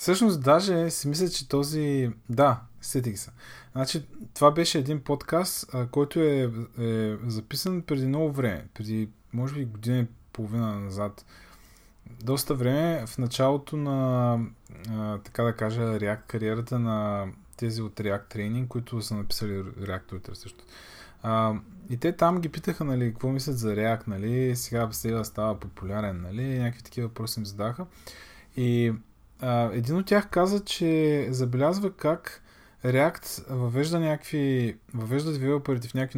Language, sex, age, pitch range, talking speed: Bulgarian, male, 20-39, 110-140 Hz, 145 wpm